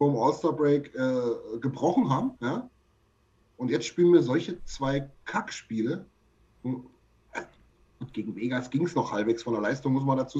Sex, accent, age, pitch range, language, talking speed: male, German, 30-49, 115-160 Hz, German, 160 wpm